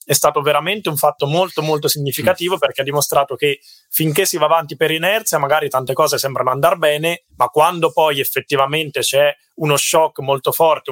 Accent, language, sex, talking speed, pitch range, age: native, Italian, male, 180 wpm, 135-165 Hz, 20-39